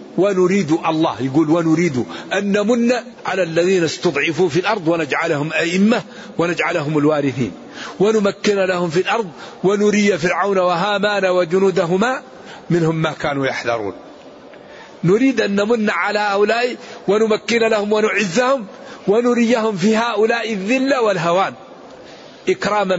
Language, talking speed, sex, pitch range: Arabic, 110 wpm, male, 165-205 Hz